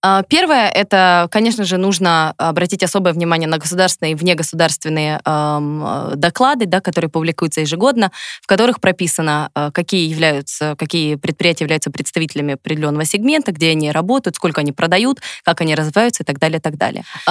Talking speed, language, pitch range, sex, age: 135 wpm, Russian, 155-185 Hz, female, 20-39